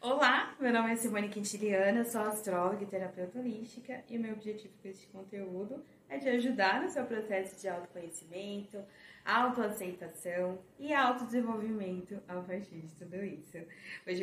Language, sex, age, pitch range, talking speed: Portuguese, female, 20-39, 185-235 Hz, 150 wpm